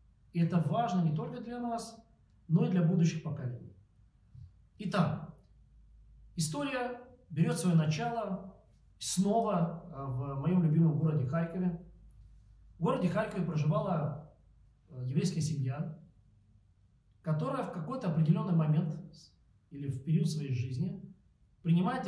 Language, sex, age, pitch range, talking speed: Russian, male, 40-59, 140-175 Hz, 110 wpm